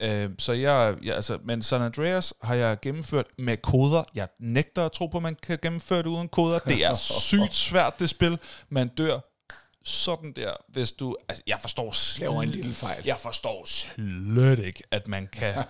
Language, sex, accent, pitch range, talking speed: Danish, male, native, 95-125 Hz, 170 wpm